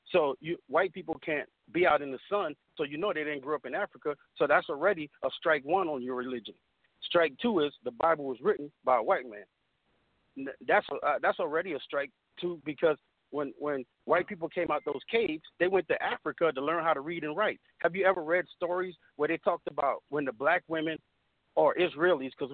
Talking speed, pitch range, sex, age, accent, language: 225 wpm, 140-175 Hz, male, 40-59, American, English